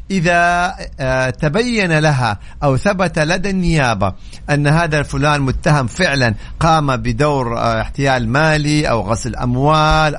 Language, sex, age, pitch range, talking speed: Arabic, male, 50-69, 130-170 Hz, 110 wpm